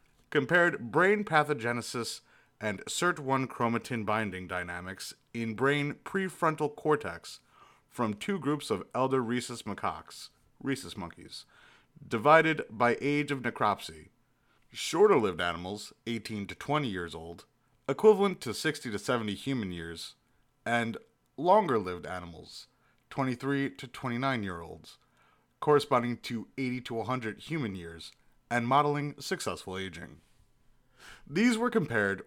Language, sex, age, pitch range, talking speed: English, male, 30-49, 105-145 Hz, 110 wpm